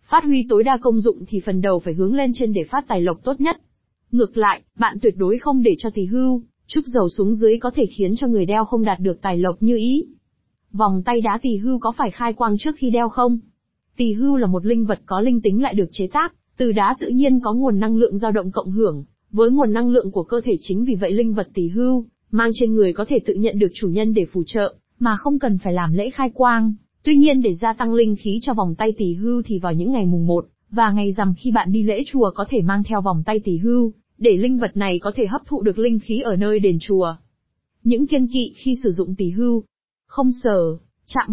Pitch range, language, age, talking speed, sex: 200-245 Hz, Vietnamese, 20-39, 260 wpm, female